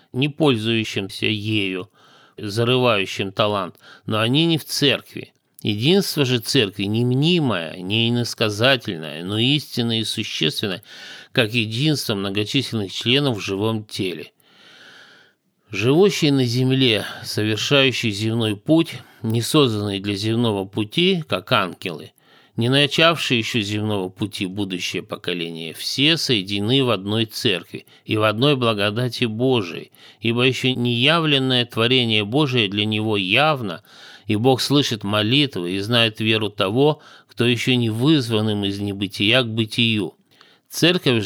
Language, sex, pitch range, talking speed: Russian, male, 105-130 Hz, 120 wpm